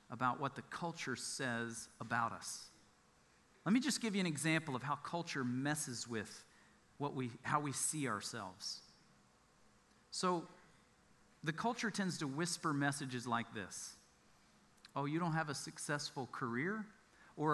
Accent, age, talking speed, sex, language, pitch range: American, 40-59, 145 wpm, male, English, 130-175 Hz